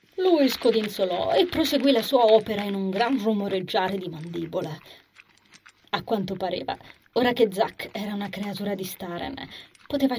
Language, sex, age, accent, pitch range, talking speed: Italian, female, 30-49, native, 175-225 Hz, 145 wpm